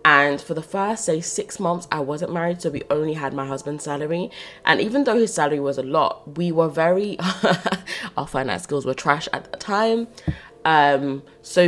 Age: 20-39